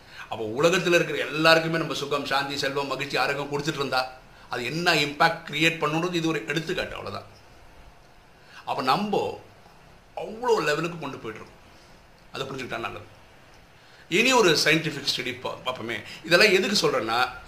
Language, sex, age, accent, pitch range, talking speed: Tamil, male, 60-79, native, 140-170 Hz, 125 wpm